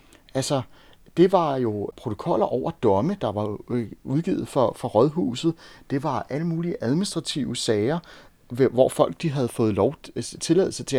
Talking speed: 140 wpm